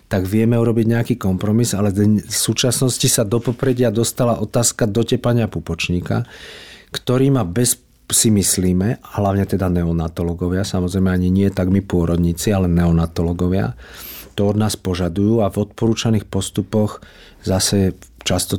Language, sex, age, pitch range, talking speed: Slovak, male, 40-59, 100-115 Hz, 130 wpm